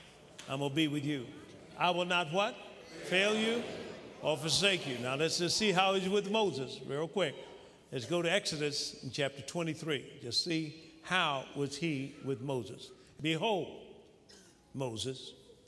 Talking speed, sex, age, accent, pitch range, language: 155 wpm, male, 50-69, American, 160-245 Hz, English